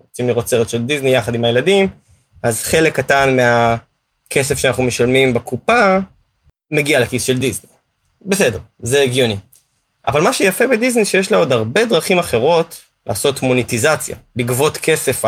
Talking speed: 135 wpm